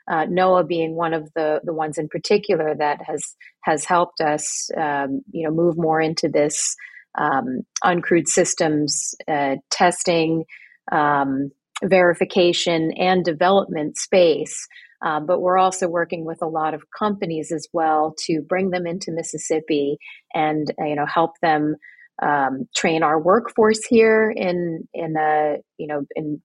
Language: English